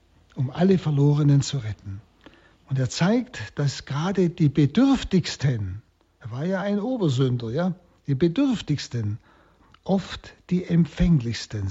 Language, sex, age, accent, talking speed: German, male, 60-79, German, 115 wpm